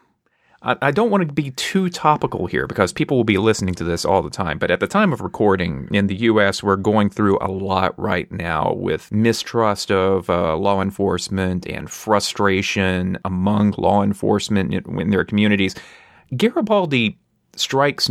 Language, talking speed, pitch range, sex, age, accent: English, 165 wpm, 100-120 Hz, male, 30-49, American